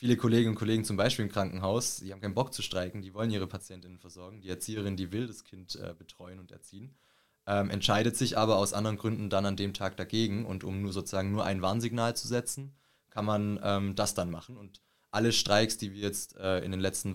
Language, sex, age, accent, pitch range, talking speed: English, male, 20-39, German, 95-115 Hz, 230 wpm